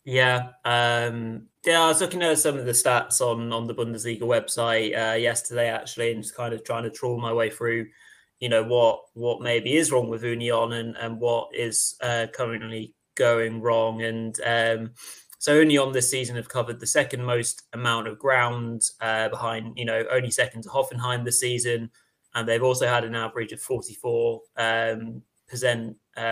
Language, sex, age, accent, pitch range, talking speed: English, male, 20-39, British, 115-130 Hz, 185 wpm